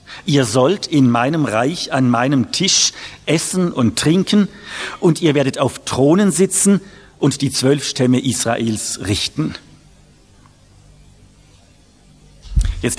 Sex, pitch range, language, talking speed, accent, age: male, 115-150 Hz, English, 110 wpm, German, 50-69